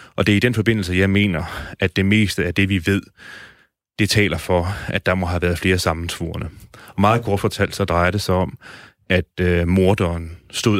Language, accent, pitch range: Danish, native, 90-100 Hz